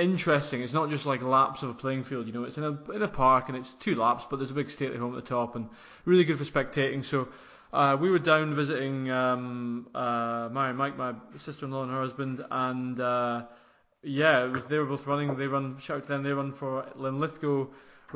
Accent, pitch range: British, 130-150 Hz